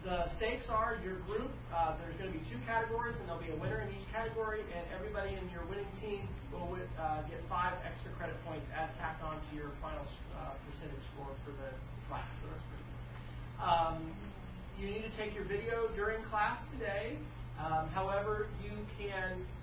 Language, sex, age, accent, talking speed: English, male, 40-59, American, 175 wpm